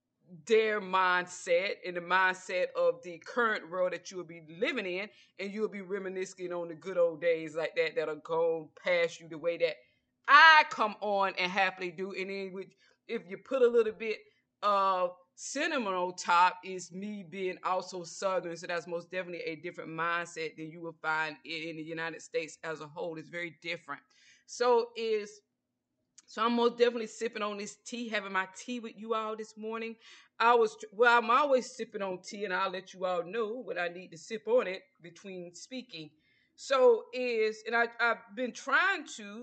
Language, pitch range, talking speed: English, 175-230 Hz, 195 wpm